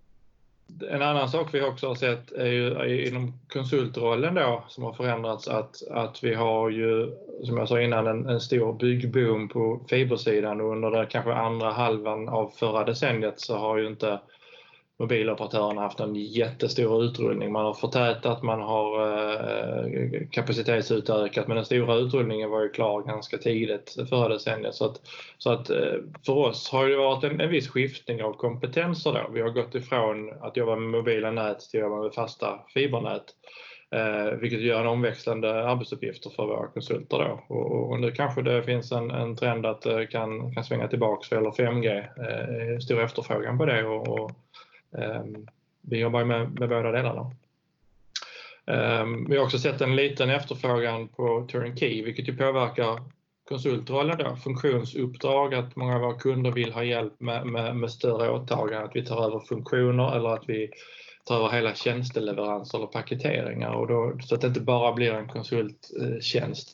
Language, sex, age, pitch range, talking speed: Swedish, male, 20-39, 110-125 Hz, 175 wpm